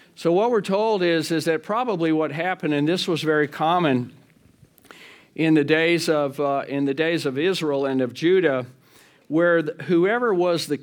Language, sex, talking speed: English, male, 185 wpm